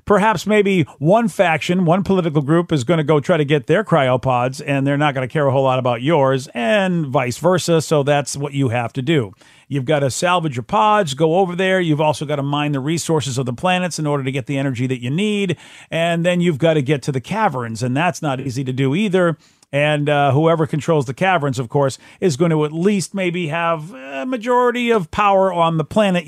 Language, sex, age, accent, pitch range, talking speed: English, male, 50-69, American, 140-175 Hz, 235 wpm